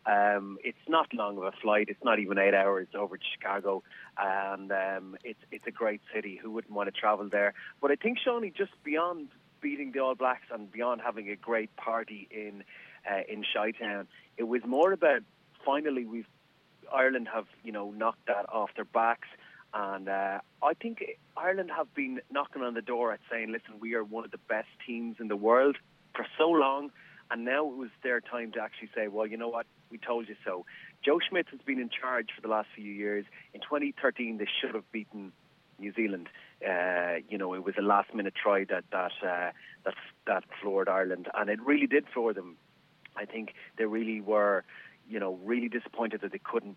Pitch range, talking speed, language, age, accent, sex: 100-125 Hz, 205 wpm, English, 30-49, Irish, male